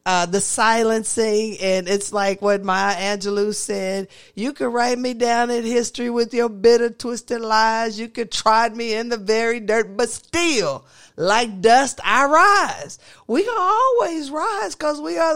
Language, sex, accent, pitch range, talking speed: English, female, American, 235-345 Hz, 170 wpm